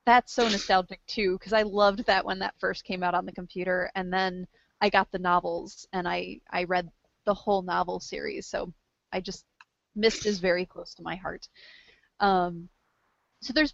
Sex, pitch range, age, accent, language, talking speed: female, 180-210 Hz, 20-39, American, English, 190 wpm